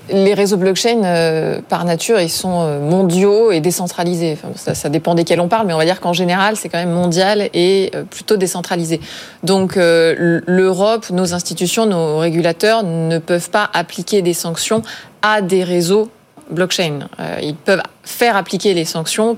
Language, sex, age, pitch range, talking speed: French, female, 20-39, 165-205 Hz, 175 wpm